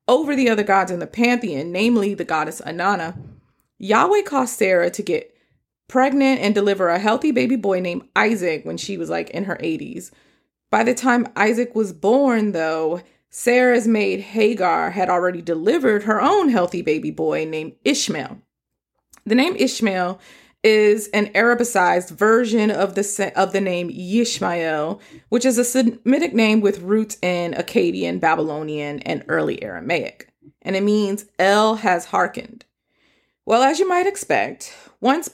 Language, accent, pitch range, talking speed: English, American, 180-245 Hz, 150 wpm